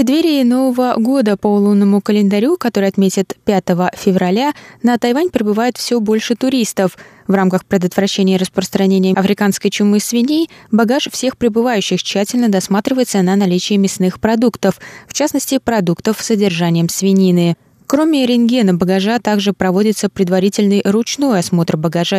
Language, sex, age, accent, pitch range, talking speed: Russian, female, 20-39, native, 190-240 Hz, 135 wpm